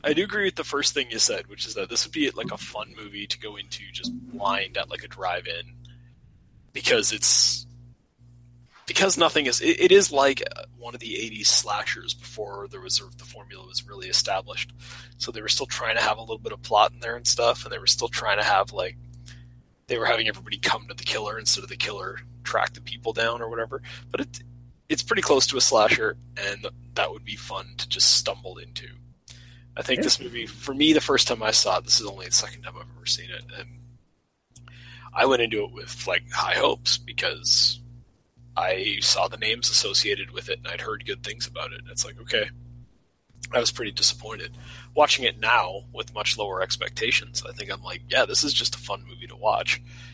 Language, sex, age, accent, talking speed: English, male, 20-39, American, 215 wpm